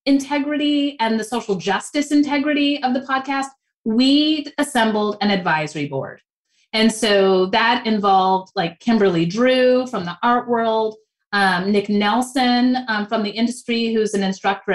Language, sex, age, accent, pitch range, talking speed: English, female, 30-49, American, 185-235 Hz, 140 wpm